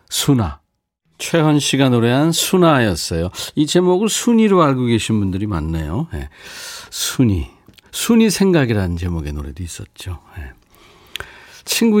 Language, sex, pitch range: Korean, male, 95-150 Hz